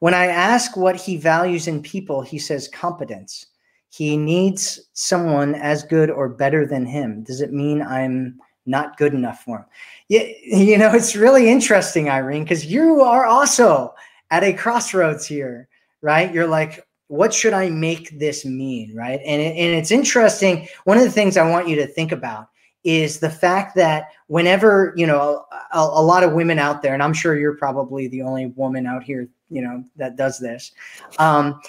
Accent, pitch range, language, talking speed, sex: American, 145-190 Hz, English, 185 wpm, male